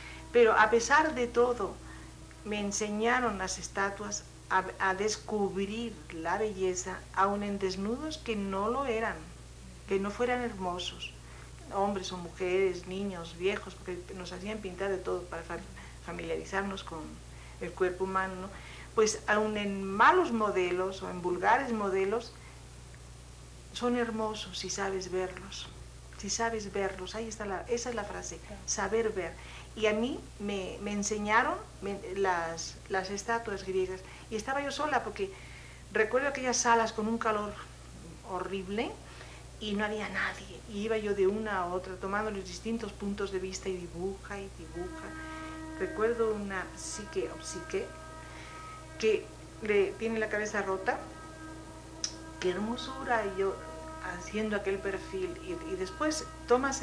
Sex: female